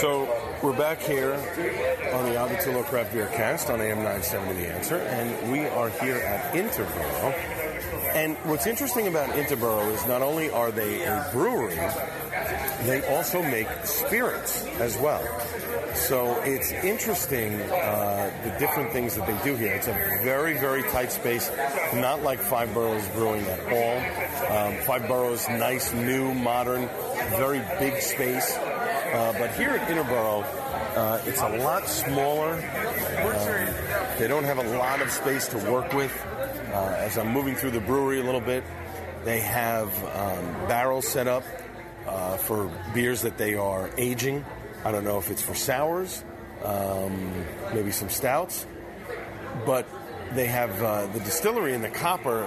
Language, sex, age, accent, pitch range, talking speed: English, male, 40-59, American, 105-130 Hz, 150 wpm